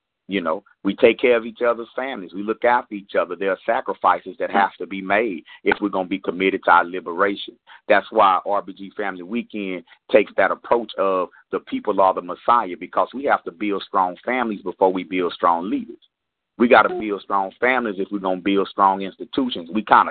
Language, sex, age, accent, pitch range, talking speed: English, male, 30-49, American, 95-120 Hz, 215 wpm